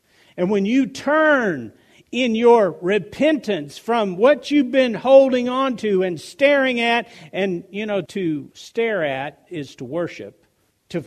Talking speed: 145 wpm